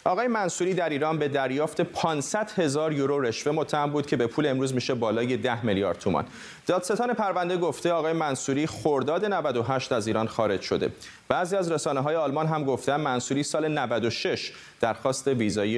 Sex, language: male, Persian